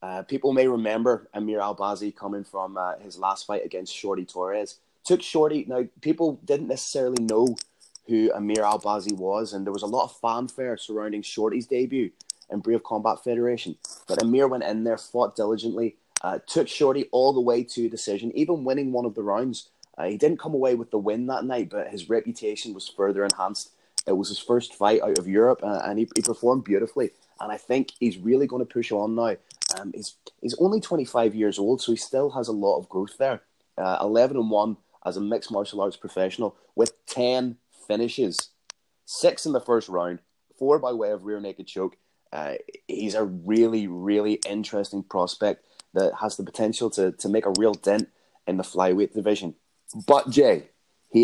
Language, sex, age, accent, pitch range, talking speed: English, male, 20-39, British, 105-125 Hz, 195 wpm